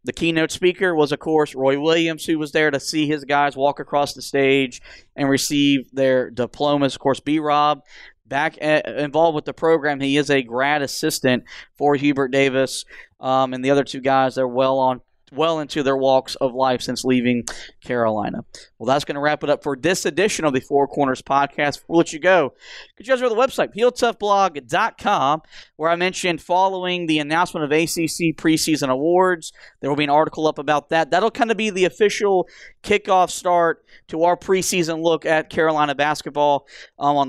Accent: American